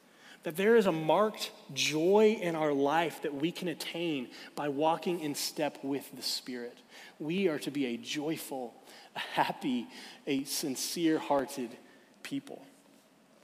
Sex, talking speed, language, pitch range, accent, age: male, 140 wpm, English, 155-250 Hz, American, 30-49